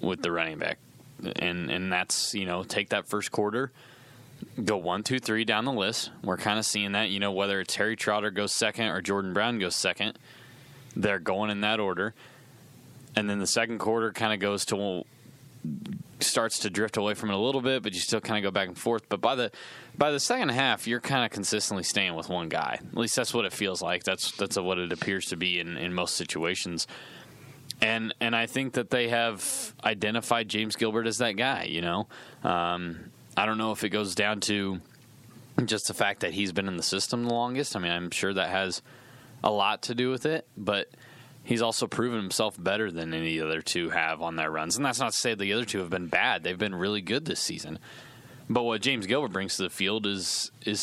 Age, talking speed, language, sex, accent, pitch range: 20-39, 225 wpm, English, male, American, 95-120 Hz